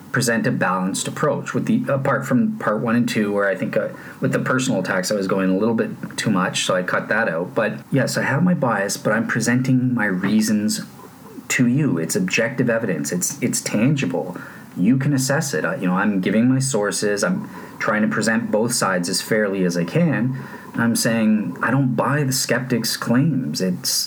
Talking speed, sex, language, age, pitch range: 200 wpm, male, English, 30-49, 105-135 Hz